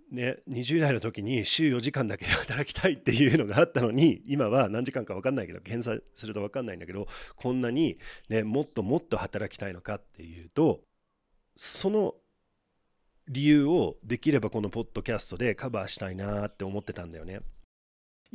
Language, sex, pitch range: Japanese, male, 105-160 Hz